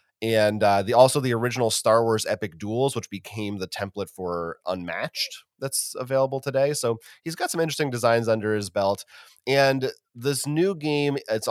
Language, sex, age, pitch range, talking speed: English, male, 30-49, 105-135 Hz, 170 wpm